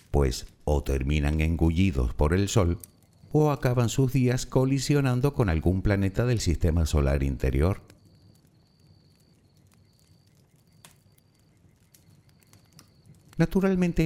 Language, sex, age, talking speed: Spanish, male, 50-69, 85 wpm